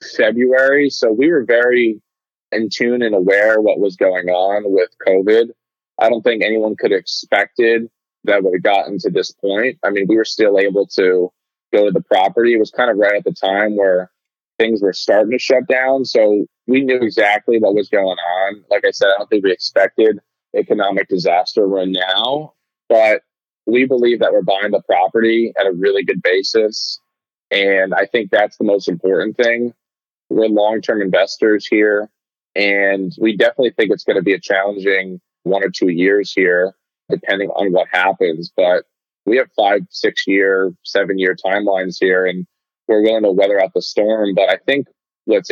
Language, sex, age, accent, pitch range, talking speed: English, male, 20-39, American, 95-120 Hz, 185 wpm